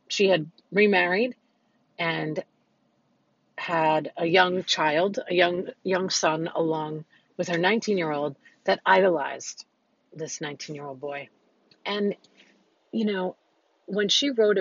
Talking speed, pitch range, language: 110 wpm, 155-200 Hz, English